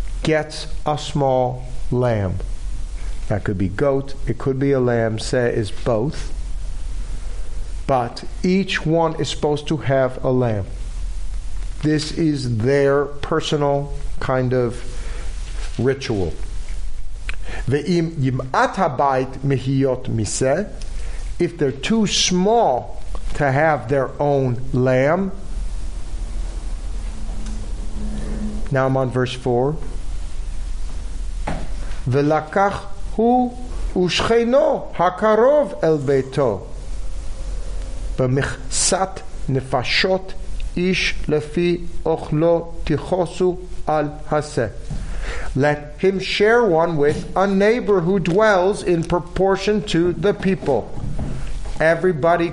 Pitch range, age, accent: 110-170 Hz, 50-69, American